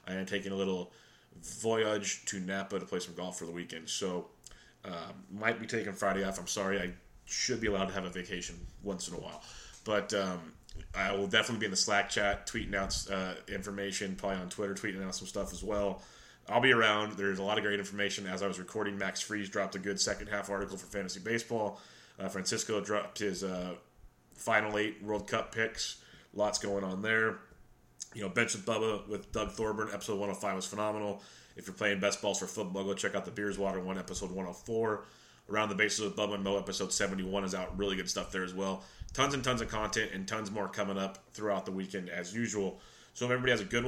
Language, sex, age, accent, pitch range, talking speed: English, male, 30-49, American, 95-110 Hz, 220 wpm